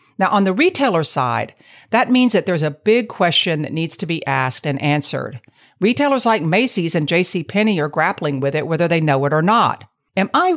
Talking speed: 205 wpm